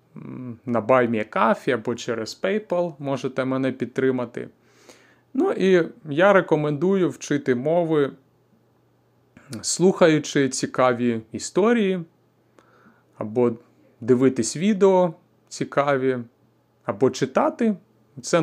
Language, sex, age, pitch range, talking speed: Ukrainian, male, 30-49, 125-160 Hz, 80 wpm